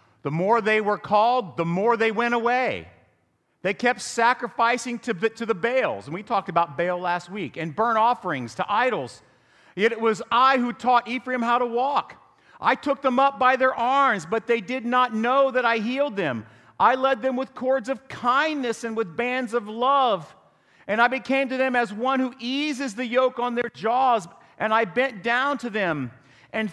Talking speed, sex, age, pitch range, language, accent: 200 wpm, male, 40-59, 175-245 Hz, English, American